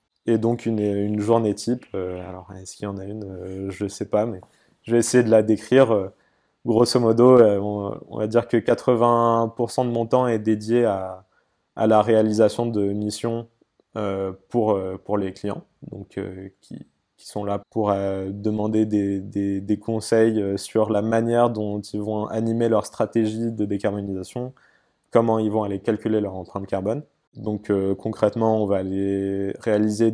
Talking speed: 165 wpm